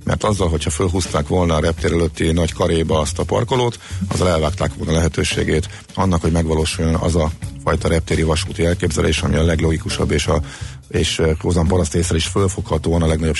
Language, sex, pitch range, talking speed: Hungarian, male, 80-100 Hz, 170 wpm